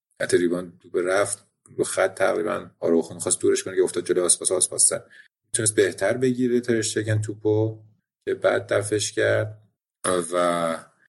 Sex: male